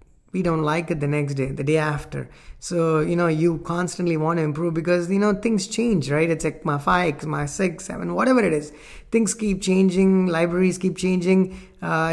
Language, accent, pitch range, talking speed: English, Indian, 150-185 Hz, 205 wpm